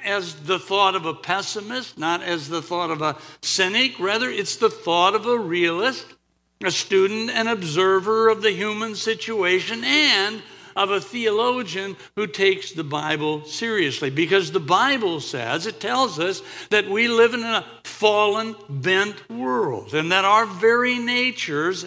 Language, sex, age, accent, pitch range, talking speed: English, male, 60-79, American, 165-225 Hz, 155 wpm